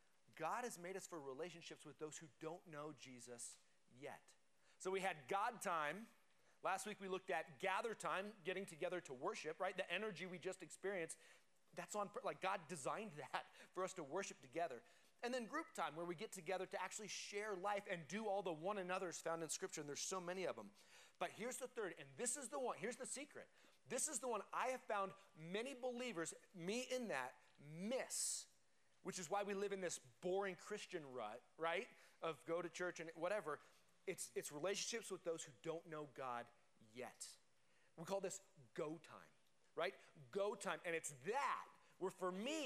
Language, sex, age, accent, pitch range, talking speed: English, male, 30-49, American, 160-200 Hz, 195 wpm